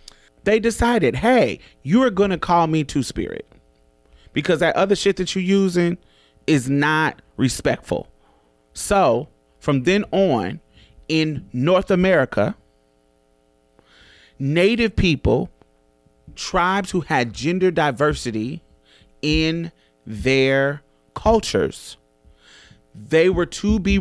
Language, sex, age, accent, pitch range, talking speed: English, male, 30-49, American, 105-175 Hz, 105 wpm